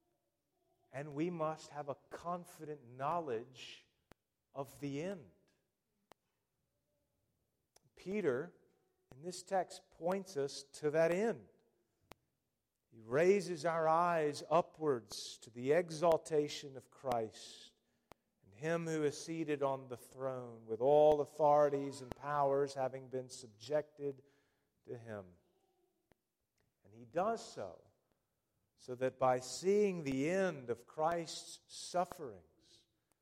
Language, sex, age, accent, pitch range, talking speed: English, male, 40-59, American, 120-165 Hz, 110 wpm